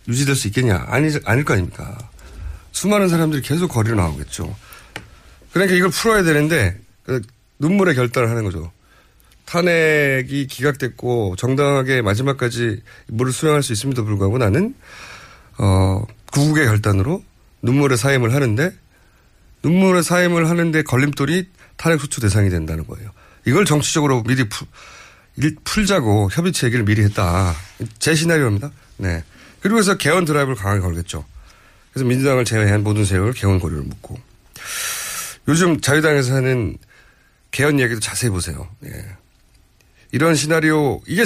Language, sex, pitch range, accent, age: Korean, male, 105-160 Hz, native, 30-49